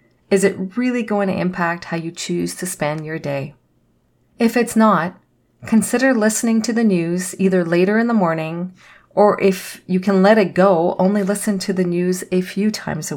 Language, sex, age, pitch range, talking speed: English, female, 40-59, 170-215 Hz, 190 wpm